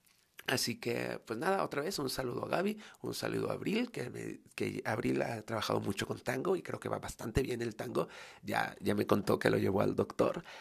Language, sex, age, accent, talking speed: Spanish, male, 40-59, Mexican, 225 wpm